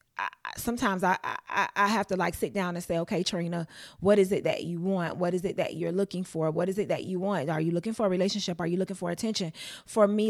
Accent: American